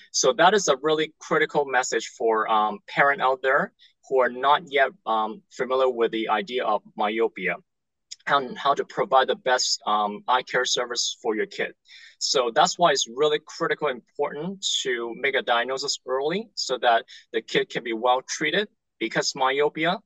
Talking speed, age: 175 wpm, 20-39